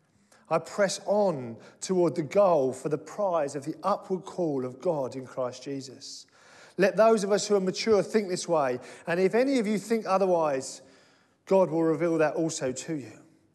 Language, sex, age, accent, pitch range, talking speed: English, male, 40-59, British, 145-200 Hz, 185 wpm